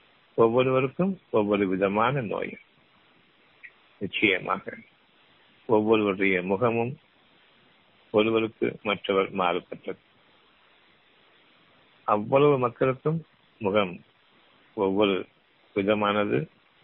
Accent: native